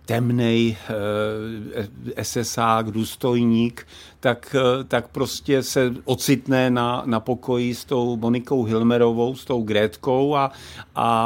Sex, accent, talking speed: male, native, 105 wpm